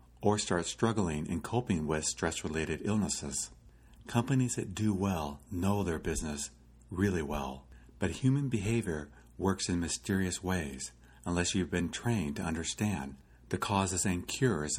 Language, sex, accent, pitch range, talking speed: English, male, American, 85-115 Hz, 140 wpm